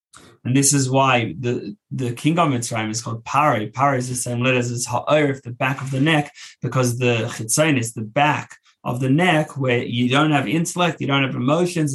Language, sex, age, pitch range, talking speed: English, male, 20-39, 125-155 Hz, 210 wpm